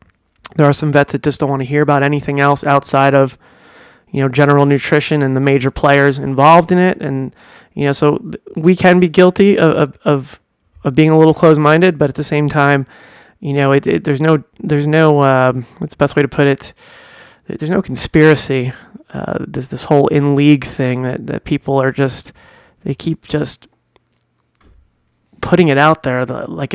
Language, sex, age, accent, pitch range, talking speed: English, male, 20-39, American, 135-160 Hz, 195 wpm